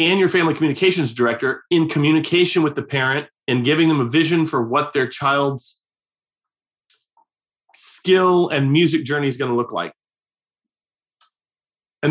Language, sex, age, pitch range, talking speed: English, male, 30-49, 140-185 Hz, 145 wpm